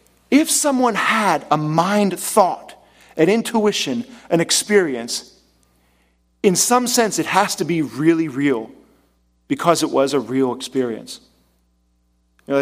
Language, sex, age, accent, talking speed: English, male, 40-59, American, 125 wpm